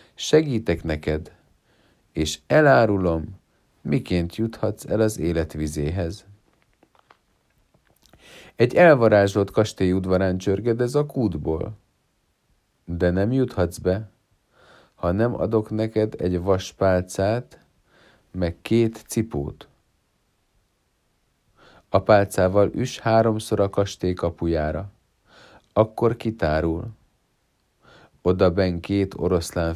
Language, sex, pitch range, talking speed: Hungarian, male, 85-110 Hz, 85 wpm